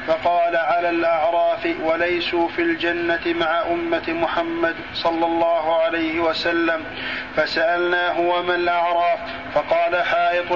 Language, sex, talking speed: Arabic, male, 110 wpm